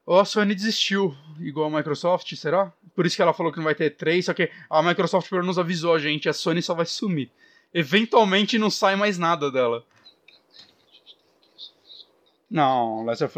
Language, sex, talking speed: Portuguese, male, 180 wpm